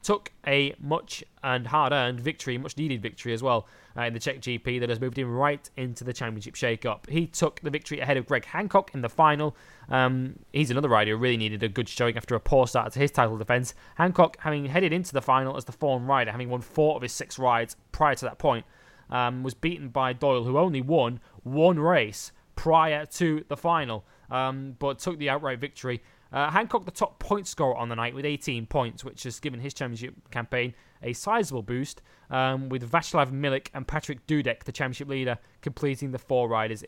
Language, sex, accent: English, male, British